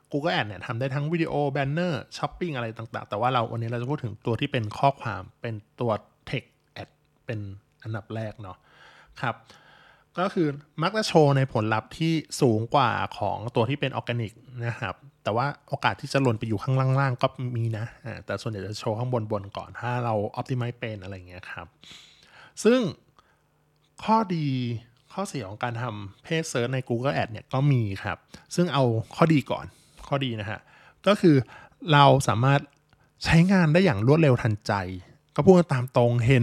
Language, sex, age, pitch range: Thai, male, 20-39, 115-145 Hz